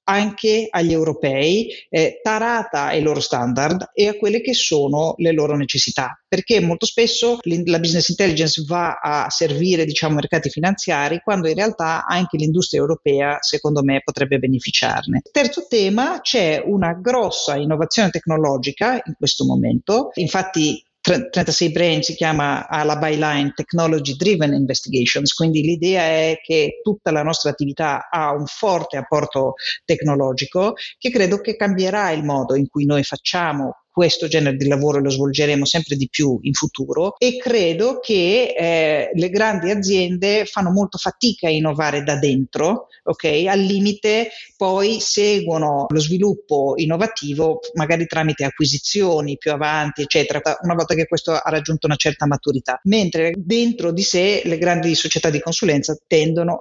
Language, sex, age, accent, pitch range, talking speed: Italian, female, 40-59, native, 150-195 Hz, 145 wpm